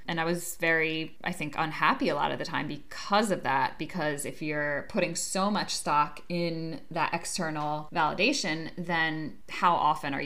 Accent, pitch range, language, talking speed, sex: American, 150-180 Hz, English, 175 wpm, female